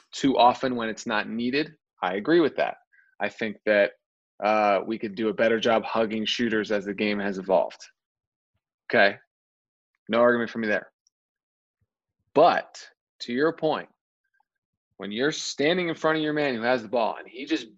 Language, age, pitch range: English, 20-39, 115-150 Hz